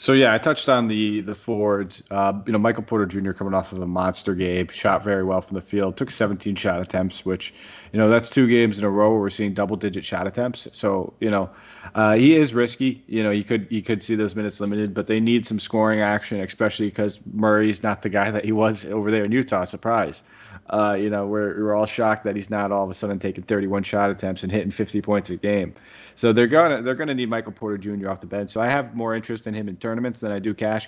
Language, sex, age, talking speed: English, male, 30-49, 260 wpm